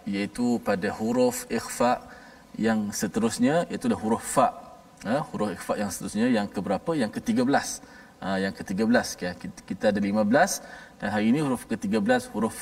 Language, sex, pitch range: Malayalam, male, 150-250 Hz